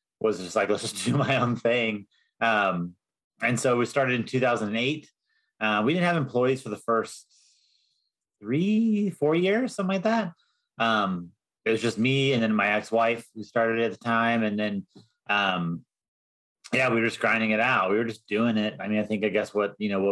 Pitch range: 105-130 Hz